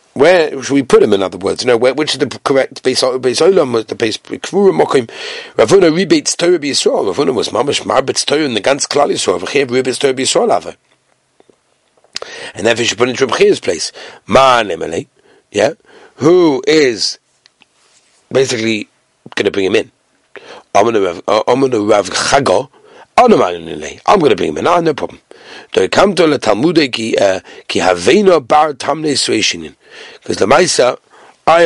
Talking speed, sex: 165 wpm, male